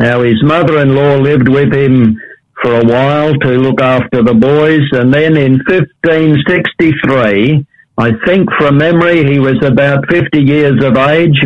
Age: 60-79